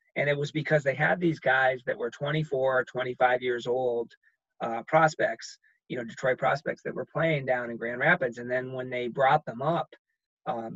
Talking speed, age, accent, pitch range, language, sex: 195 wpm, 30-49, American, 125-150 Hz, English, male